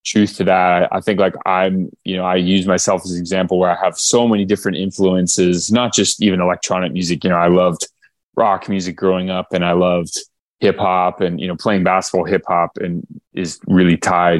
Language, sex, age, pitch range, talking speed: English, male, 20-39, 90-100 Hz, 205 wpm